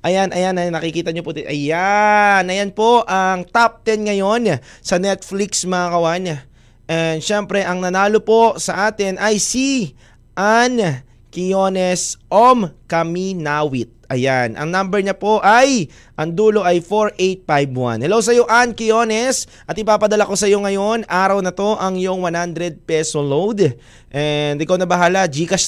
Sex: male